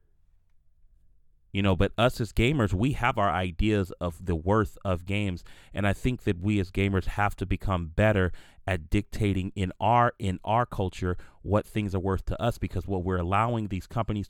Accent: American